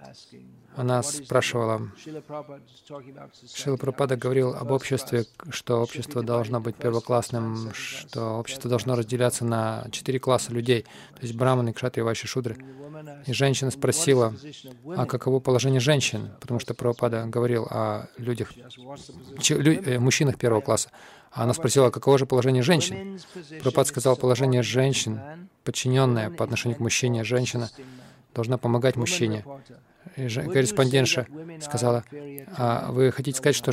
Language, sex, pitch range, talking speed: Russian, male, 120-140 Hz, 125 wpm